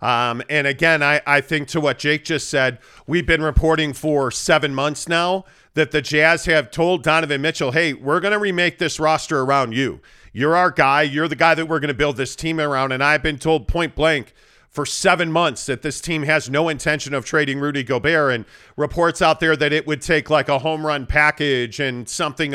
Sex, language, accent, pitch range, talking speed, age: male, English, American, 150-175 Hz, 220 wpm, 40-59